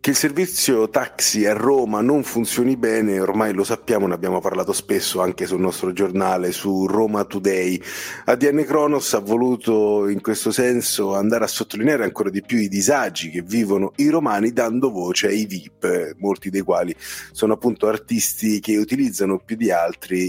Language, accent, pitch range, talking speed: Italian, native, 100-160 Hz, 170 wpm